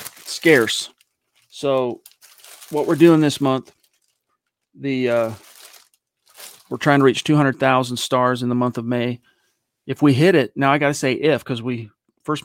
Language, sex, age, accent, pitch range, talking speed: English, male, 40-59, American, 120-140 Hz, 165 wpm